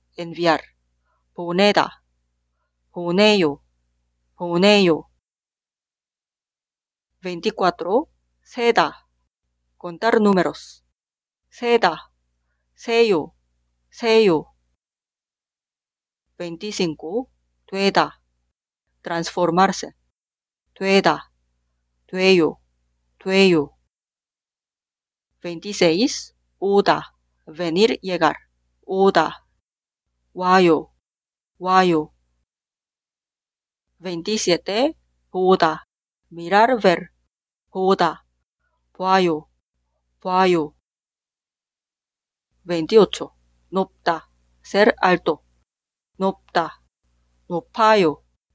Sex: female